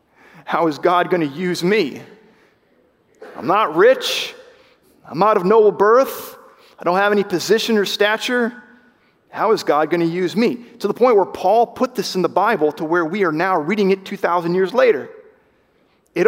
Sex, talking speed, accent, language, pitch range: male, 185 wpm, American, English, 180-235 Hz